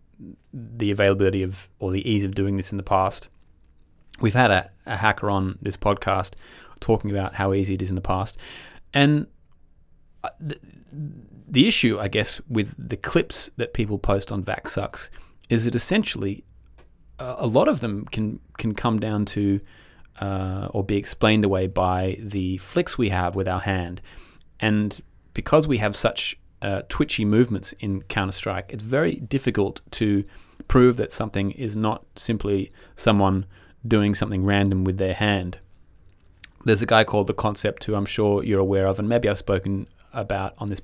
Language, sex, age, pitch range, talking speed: English, male, 30-49, 95-110 Hz, 170 wpm